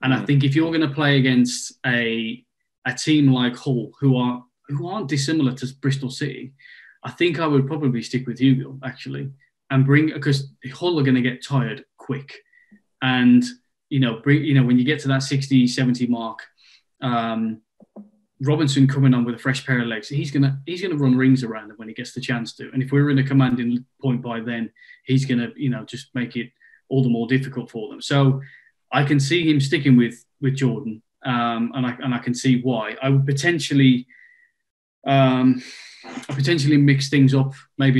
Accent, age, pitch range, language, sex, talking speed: British, 20-39, 120-140 Hz, English, male, 200 wpm